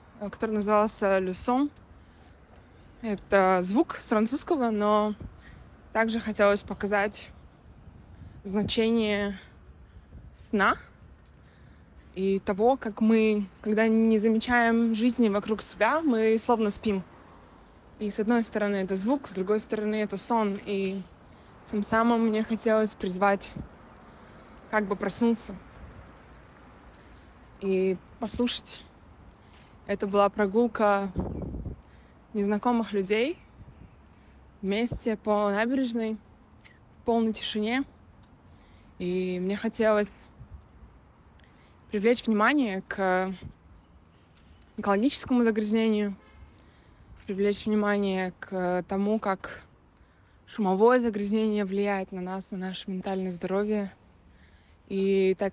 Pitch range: 185-220 Hz